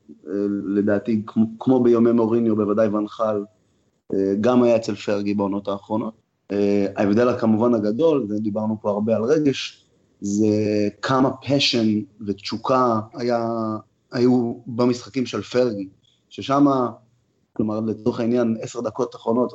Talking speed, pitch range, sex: 125 wpm, 105-135 Hz, male